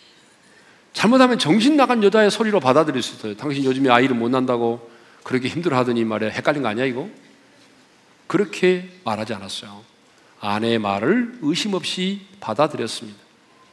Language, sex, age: Korean, male, 40-59